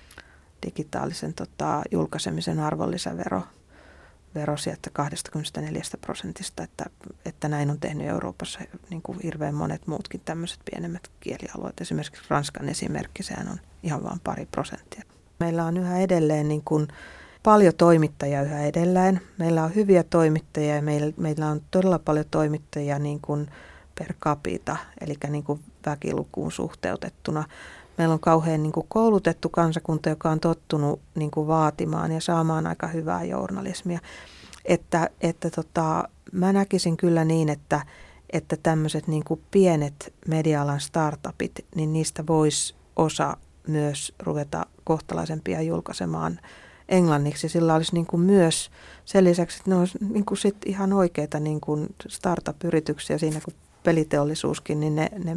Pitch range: 150-170 Hz